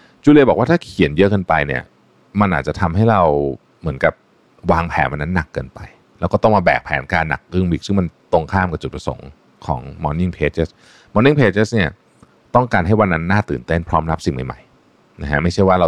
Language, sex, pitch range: Thai, male, 75-110 Hz